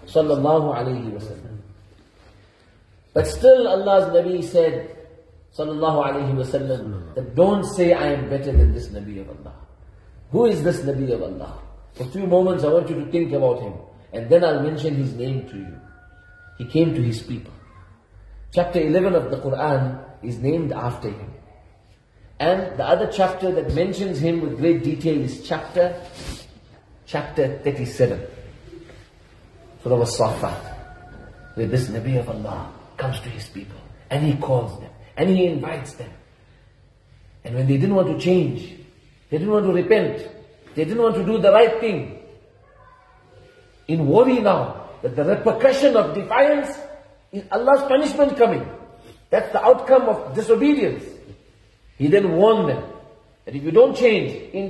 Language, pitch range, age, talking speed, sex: English, 110-185 Hz, 40-59, 155 wpm, male